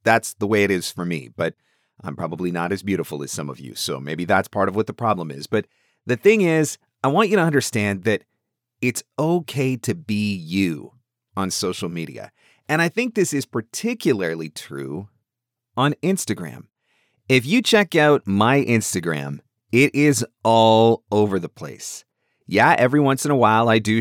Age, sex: 40-59, male